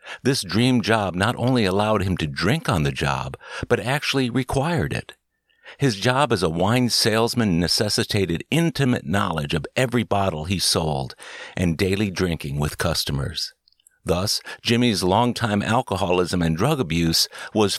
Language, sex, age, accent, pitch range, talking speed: English, male, 60-79, American, 90-120 Hz, 145 wpm